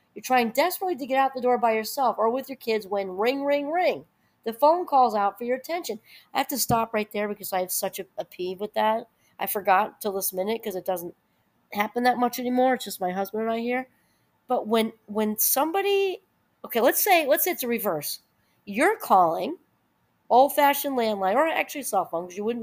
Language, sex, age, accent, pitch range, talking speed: English, female, 40-59, American, 210-280 Hz, 215 wpm